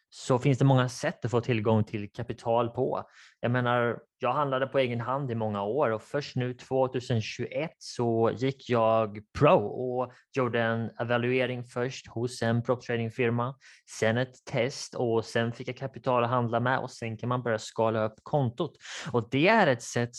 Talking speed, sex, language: 185 wpm, male, Swedish